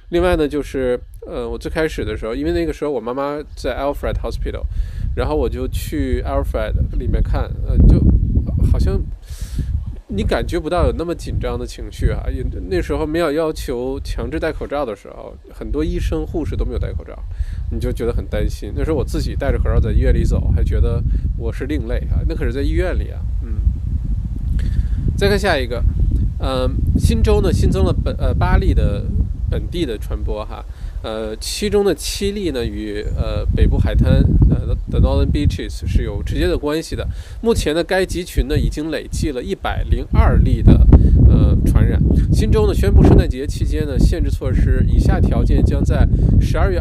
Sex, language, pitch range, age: male, Chinese, 80-110 Hz, 20-39